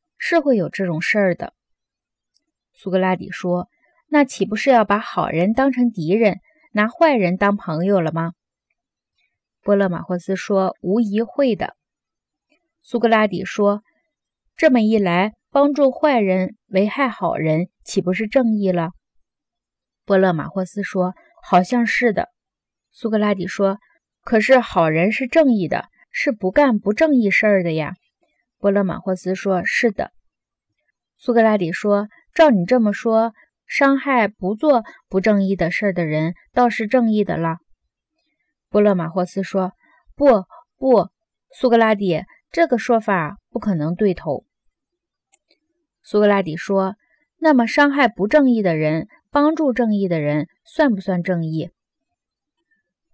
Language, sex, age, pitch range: Chinese, female, 20-39, 185-265 Hz